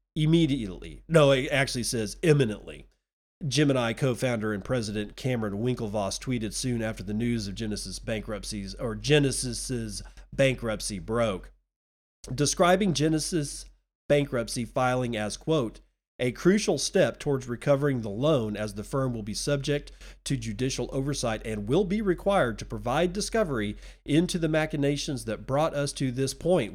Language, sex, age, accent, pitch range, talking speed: English, male, 40-59, American, 115-155 Hz, 140 wpm